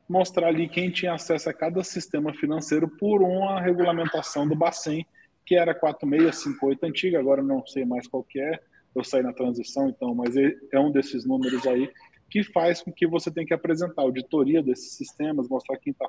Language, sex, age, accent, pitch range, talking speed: Portuguese, male, 20-39, Brazilian, 135-180 Hz, 185 wpm